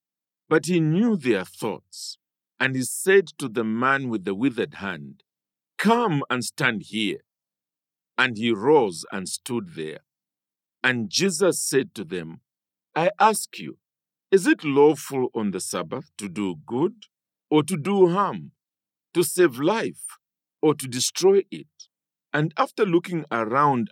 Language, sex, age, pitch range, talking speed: English, male, 50-69, 110-170 Hz, 145 wpm